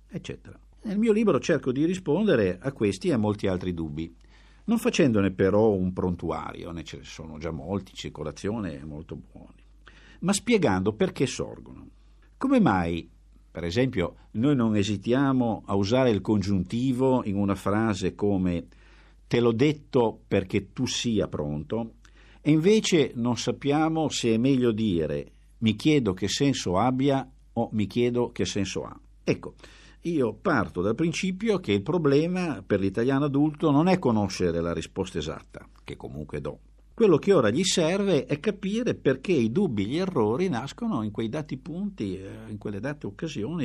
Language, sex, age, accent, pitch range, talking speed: Italian, male, 50-69, native, 95-145 Hz, 160 wpm